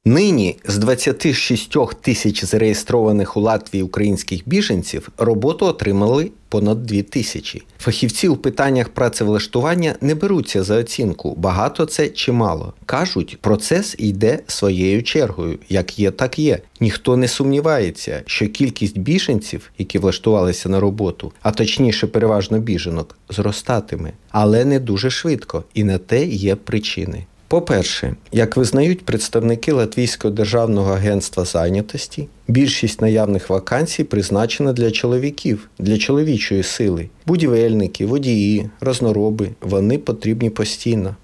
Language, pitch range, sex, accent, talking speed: Ukrainian, 100-125 Hz, male, native, 120 wpm